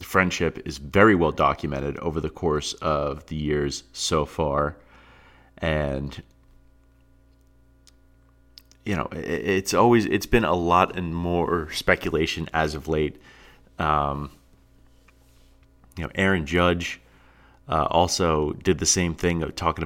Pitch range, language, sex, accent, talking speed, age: 70-85 Hz, English, male, American, 125 wpm, 30-49